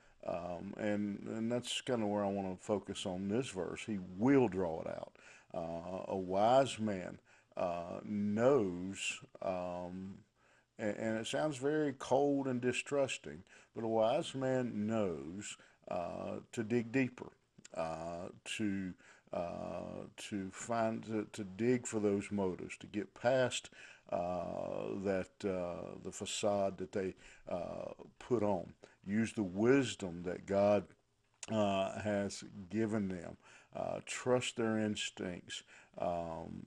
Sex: male